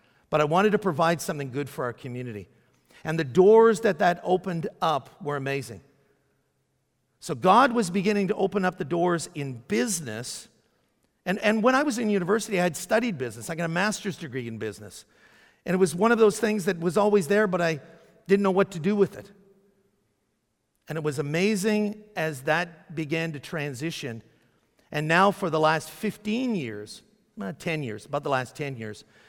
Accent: American